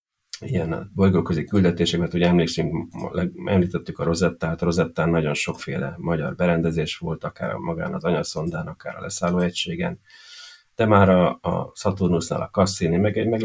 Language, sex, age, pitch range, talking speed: Hungarian, male, 30-49, 85-100 Hz, 145 wpm